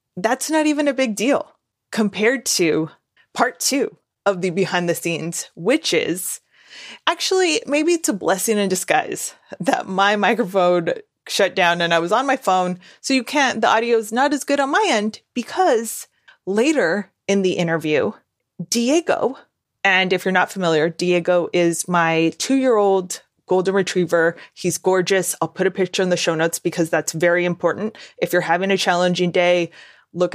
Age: 20-39